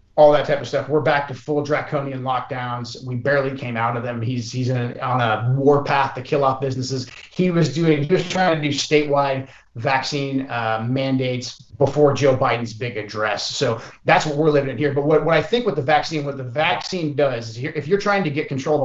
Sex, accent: male, American